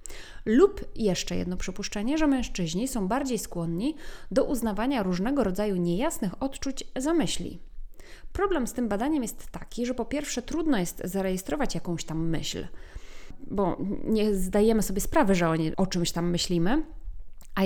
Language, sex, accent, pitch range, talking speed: Polish, female, native, 185-270 Hz, 150 wpm